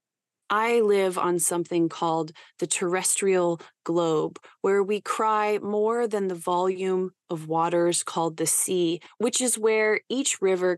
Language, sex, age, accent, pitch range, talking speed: English, female, 20-39, American, 165-205 Hz, 140 wpm